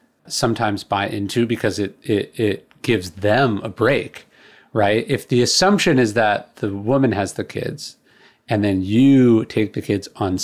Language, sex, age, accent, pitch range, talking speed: English, male, 30-49, American, 105-150 Hz, 165 wpm